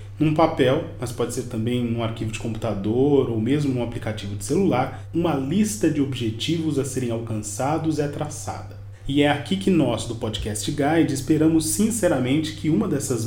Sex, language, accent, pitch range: male, Portuguese, Brazilian, 120-160 Hz